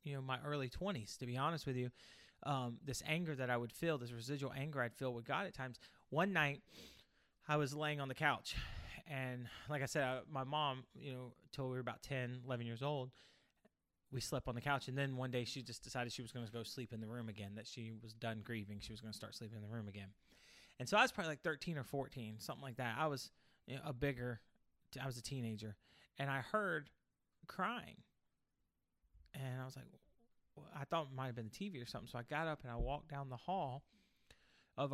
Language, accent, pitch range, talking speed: English, American, 120-145 Hz, 240 wpm